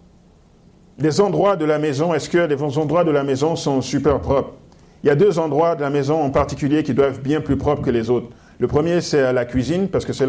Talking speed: 245 wpm